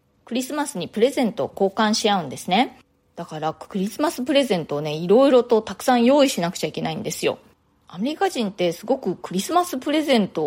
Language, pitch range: Japanese, 175-250 Hz